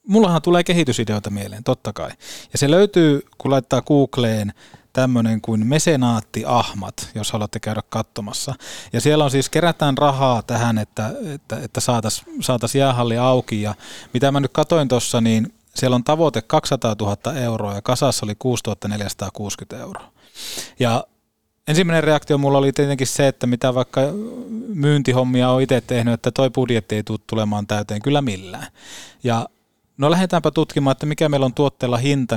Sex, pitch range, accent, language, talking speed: male, 110-140 Hz, native, Finnish, 150 wpm